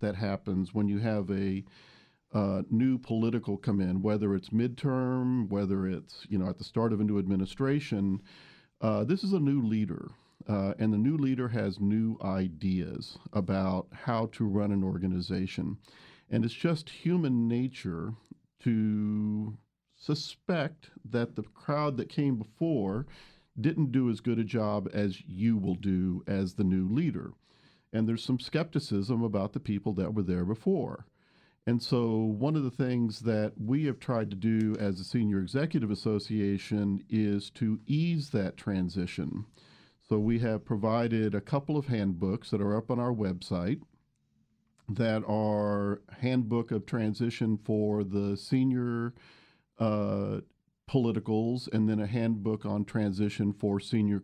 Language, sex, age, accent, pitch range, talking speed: English, male, 50-69, American, 100-125 Hz, 150 wpm